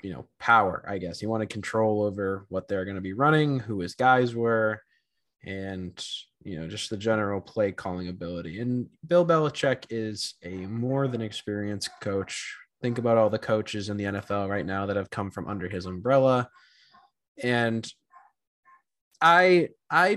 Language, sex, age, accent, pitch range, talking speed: English, male, 20-39, American, 105-140 Hz, 175 wpm